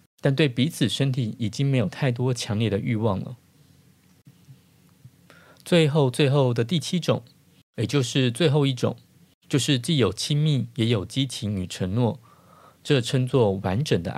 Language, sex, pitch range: Chinese, male, 115-150 Hz